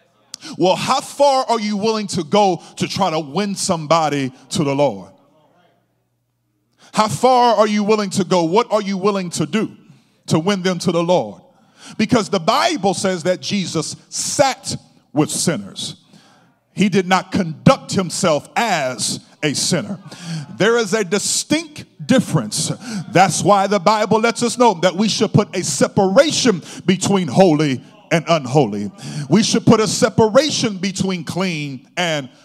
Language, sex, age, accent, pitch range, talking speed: English, male, 40-59, American, 155-210 Hz, 150 wpm